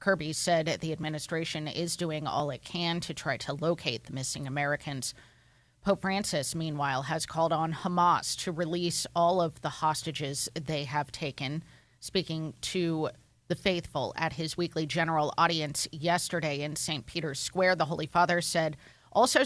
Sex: female